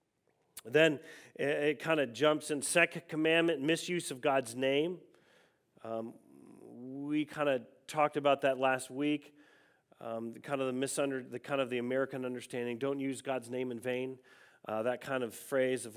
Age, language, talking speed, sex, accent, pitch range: 40-59, English, 170 wpm, male, American, 120-150 Hz